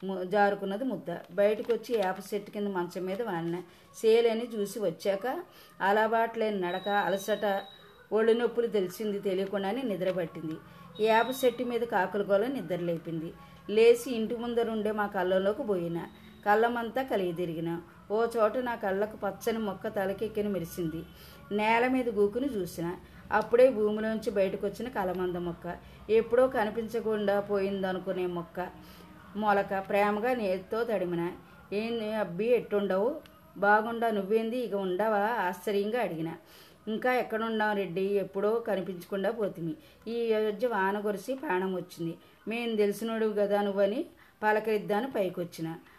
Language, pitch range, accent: Telugu, 185-225 Hz, native